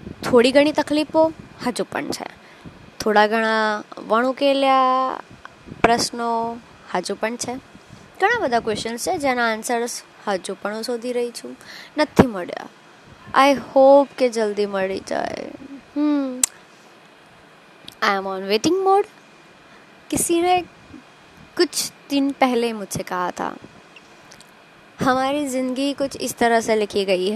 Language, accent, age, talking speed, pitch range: Gujarati, native, 20-39, 105 wpm, 220-290 Hz